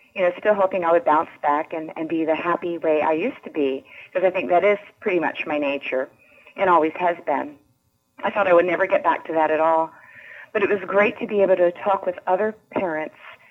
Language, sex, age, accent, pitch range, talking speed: English, female, 40-59, American, 160-195 Hz, 240 wpm